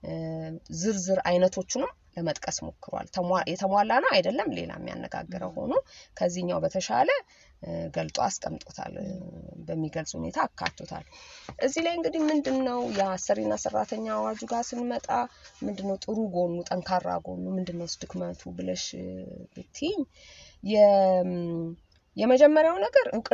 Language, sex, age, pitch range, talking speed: English, female, 30-49, 160-245 Hz, 95 wpm